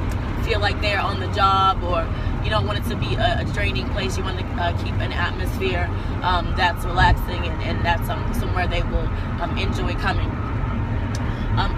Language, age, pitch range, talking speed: English, 20-39, 90-105 Hz, 195 wpm